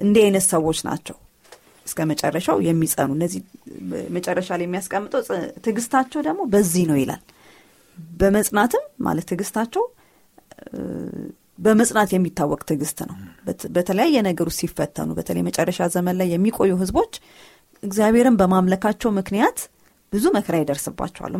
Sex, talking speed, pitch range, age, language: female, 105 wpm, 165-215 Hz, 30-49, Amharic